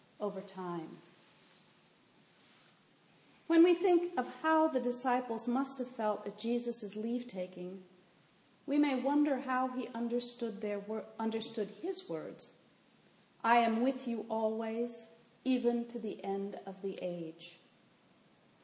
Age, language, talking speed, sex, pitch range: 40-59, English, 115 wpm, female, 205-245 Hz